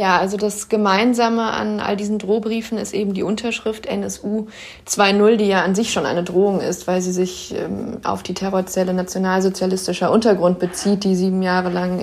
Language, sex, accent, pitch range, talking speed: German, female, German, 185-205 Hz, 180 wpm